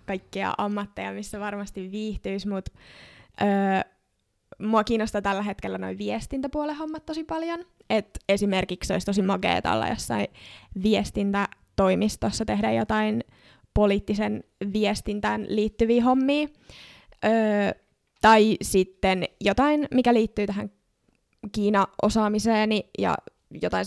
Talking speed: 100 wpm